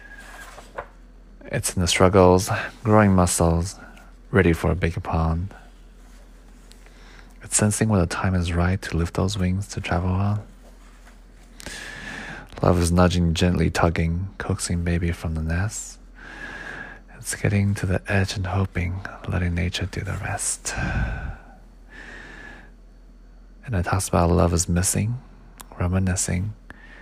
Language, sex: English, male